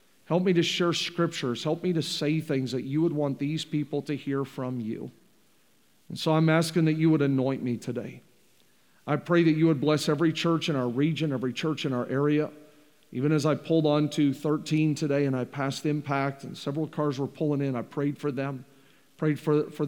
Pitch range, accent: 130-155 Hz, American